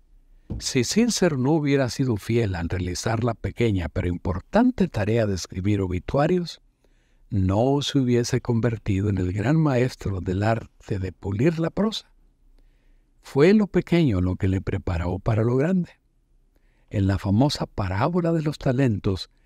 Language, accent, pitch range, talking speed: Spanish, Mexican, 95-145 Hz, 145 wpm